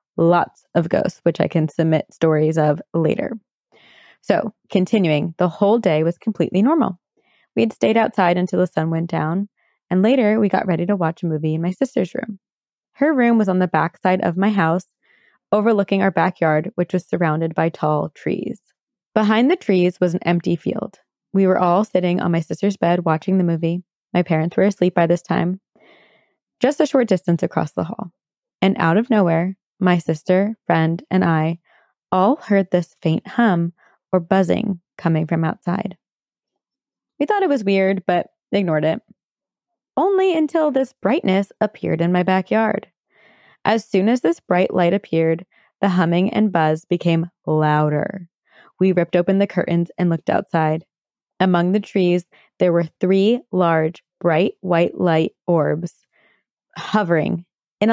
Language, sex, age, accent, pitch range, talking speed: English, female, 20-39, American, 170-205 Hz, 165 wpm